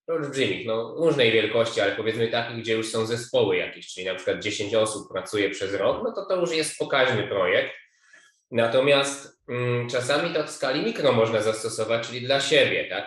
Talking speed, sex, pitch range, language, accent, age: 175 wpm, male, 110-130 Hz, Polish, native, 20-39